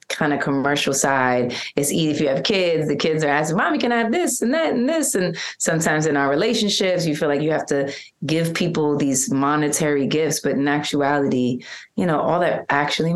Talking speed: 215 wpm